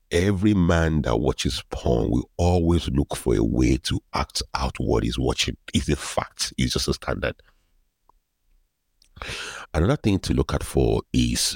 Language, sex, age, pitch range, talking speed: English, male, 50-69, 65-80 Hz, 160 wpm